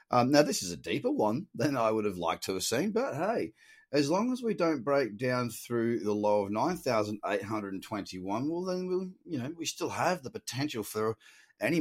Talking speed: 235 wpm